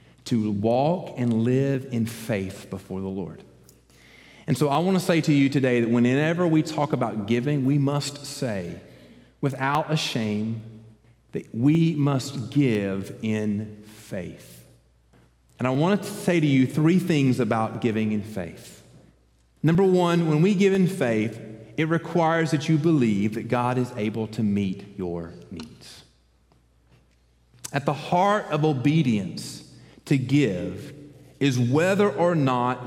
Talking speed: 145 wpm